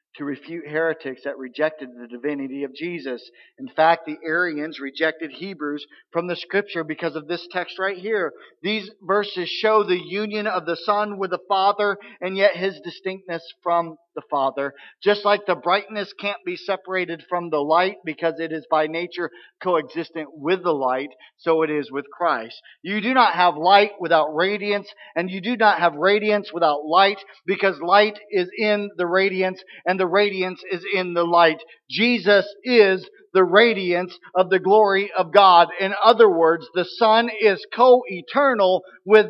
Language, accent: English, American